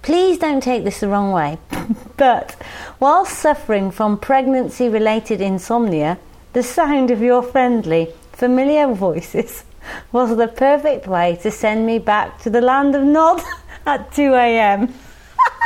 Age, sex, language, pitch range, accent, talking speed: 40-59, female, English, 190-255 Hz, British, 135 wpm